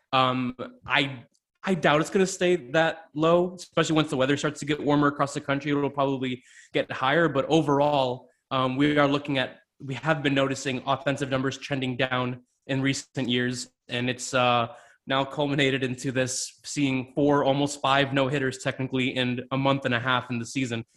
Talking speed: 190 wpm